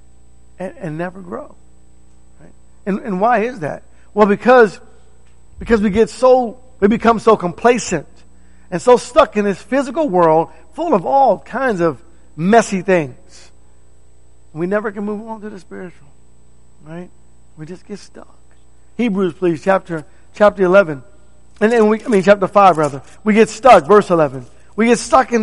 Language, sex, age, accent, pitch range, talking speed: English, male, 50-69, American, 140-220 Hz, 165 wpm